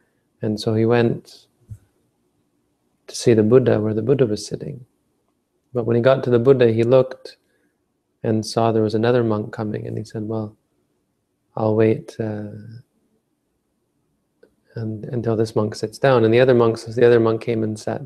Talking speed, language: 165 wpm, English